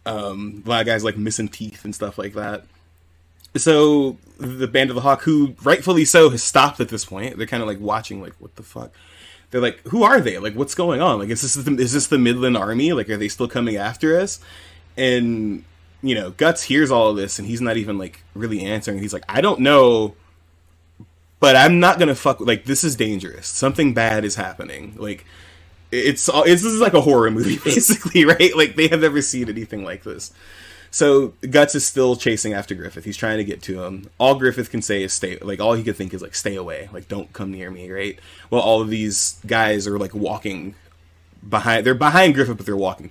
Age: 20-39